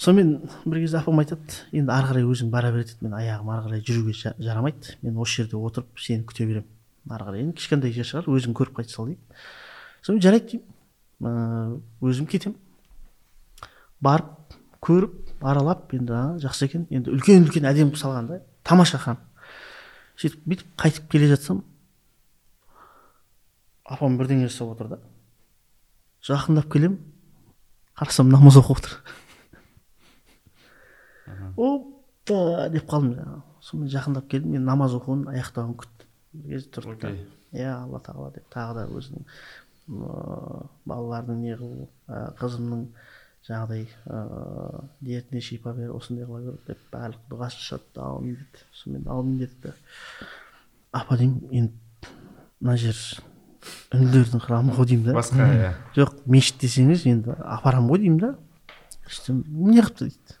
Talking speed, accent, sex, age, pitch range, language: 60 wpm, Turkish, male, 30-49, 120-150 Hz, Russian